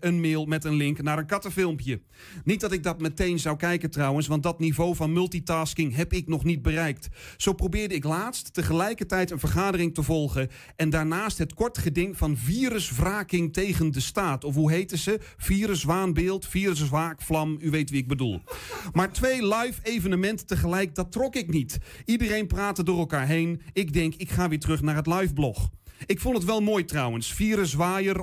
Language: Dutch